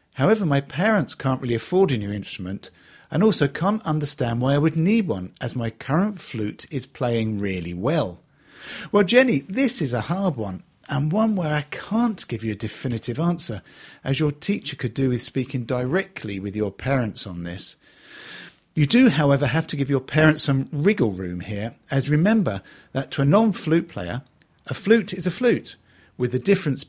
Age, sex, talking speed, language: 50-69, male, 185 wpm, English